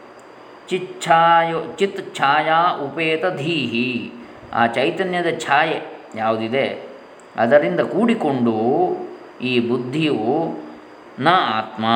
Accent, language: native, Kannada